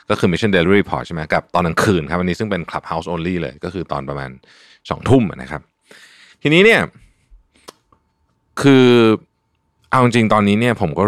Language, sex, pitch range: Thai, male, 85-120 Hz